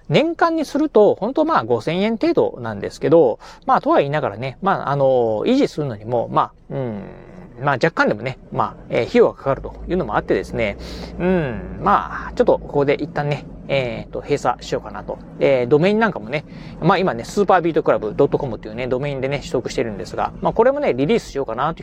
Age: 40-59